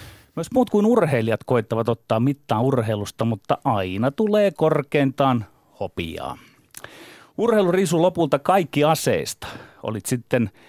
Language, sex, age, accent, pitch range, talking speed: Finnish, male, 30-49, native, 110-160 Hz, 105 wpm